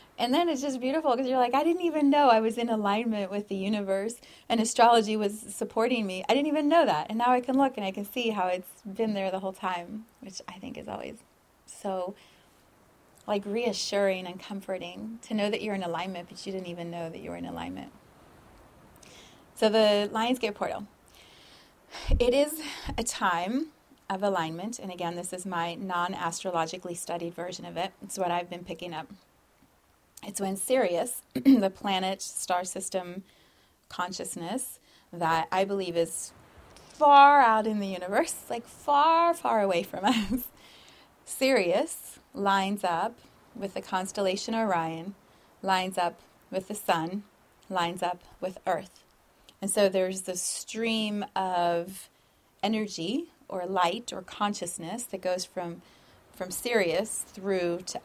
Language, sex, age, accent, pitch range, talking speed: English, female, 30-49, American, 180-225 Hz, 160 wpm